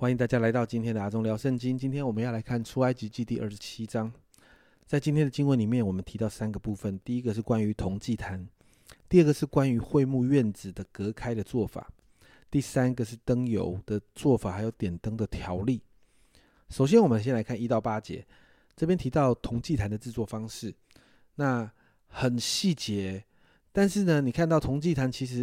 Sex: male